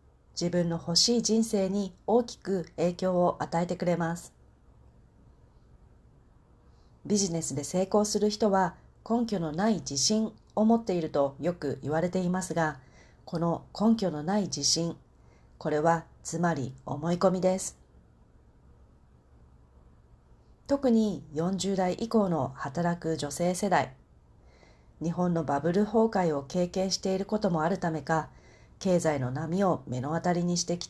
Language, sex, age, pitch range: Japanese, female, 40-59, 140-190 Hz